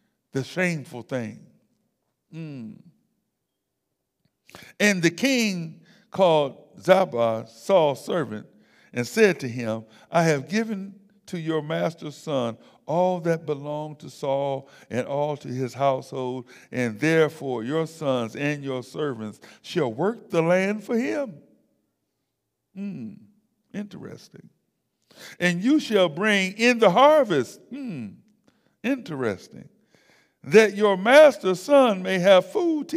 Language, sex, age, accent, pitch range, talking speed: English, male, 60-79, American, 140-210 Hz, 115 wpm